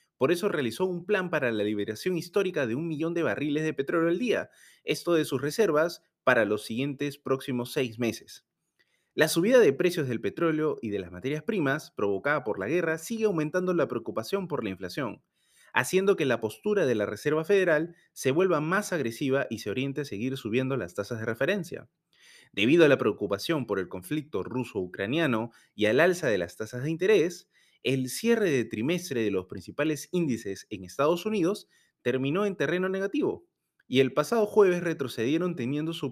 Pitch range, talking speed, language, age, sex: 120-170 Hz, 185 wpm, Spanish, 30-49, male